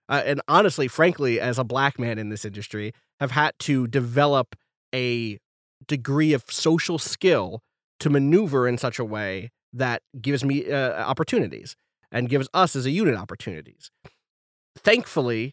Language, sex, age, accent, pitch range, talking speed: English, male, 30-49, American, 120-160 Hz, 150 wpm